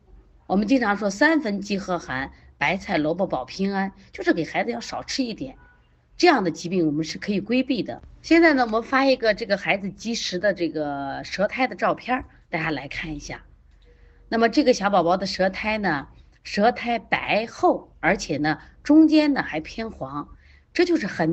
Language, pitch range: Chinese, 165-270 Hz